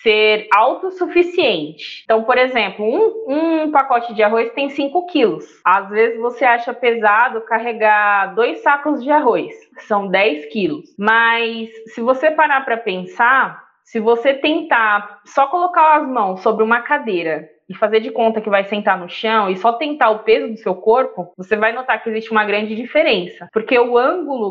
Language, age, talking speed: Portuguese, 20-39, 170 wpm